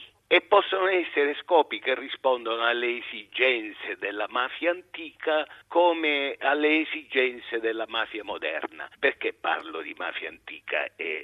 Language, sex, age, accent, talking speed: Italian, male, 50-69, native, 125 wpm